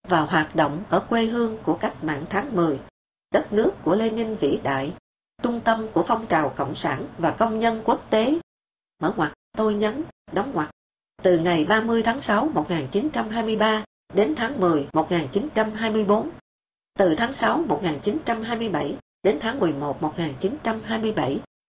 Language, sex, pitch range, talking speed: English, female, 165-230 Hz, 150 wpm